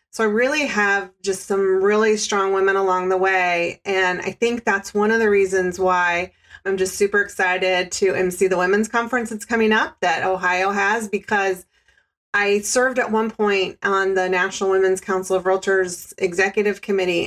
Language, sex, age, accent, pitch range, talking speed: English, female, 30-49, American, 190-215 Hz, 175 wpm